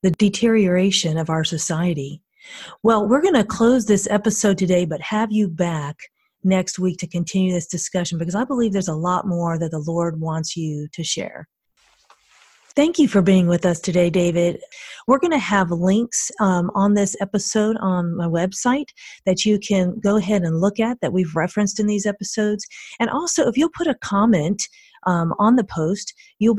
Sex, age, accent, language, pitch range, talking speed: female, 40-59, American, English, 175-220 Hz, 185 wpm